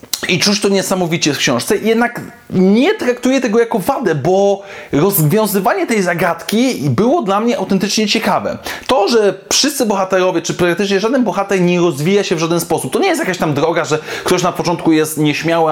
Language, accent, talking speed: Polish, native, 180 wpm